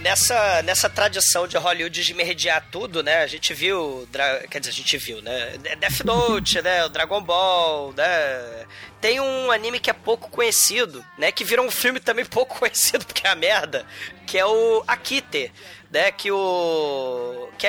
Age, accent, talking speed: 20-39, Brazilian, 180 wpm